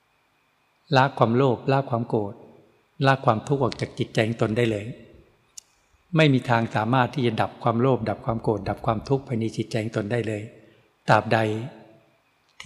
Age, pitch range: 60-79, 115-135 Hz